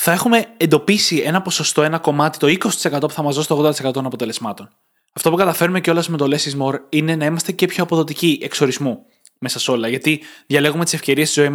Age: 20-39